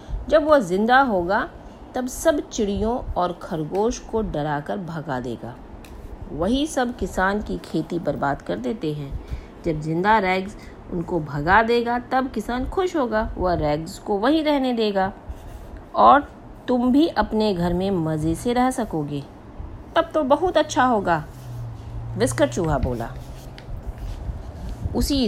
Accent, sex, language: native, female, Hindi